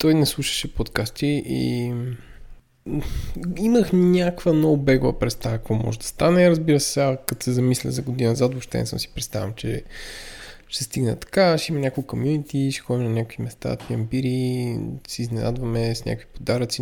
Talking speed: 170 wpm